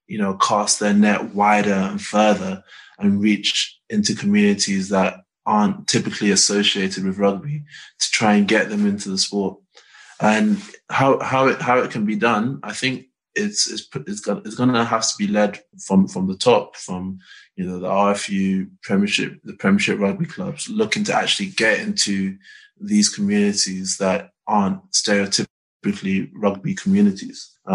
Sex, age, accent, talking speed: male, 20-39, British, 160 wpm